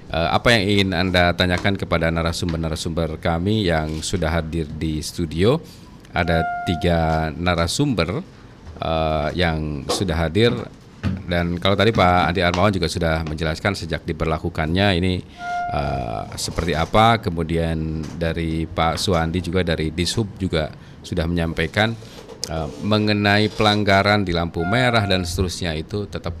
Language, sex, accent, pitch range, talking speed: Indonesian, male, native, 85-110 Hz, 125 wpm